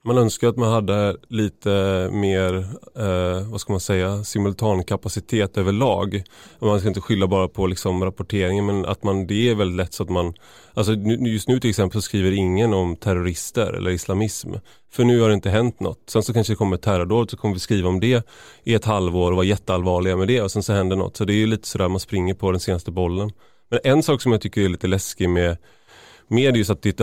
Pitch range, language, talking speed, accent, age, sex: 95-110 Hz, Swedish, 235 wpm, native, 30-49, male